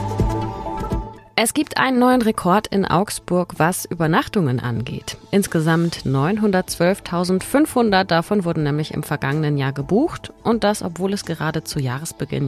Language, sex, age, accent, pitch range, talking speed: German, female, 30-49, German, 135-190 Hz, 125 wpm